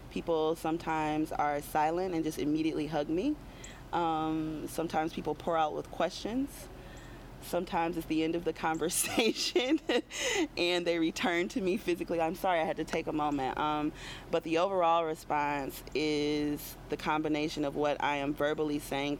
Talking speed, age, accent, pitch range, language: 160 wpm, 30-49, American, 140-160 Hz, English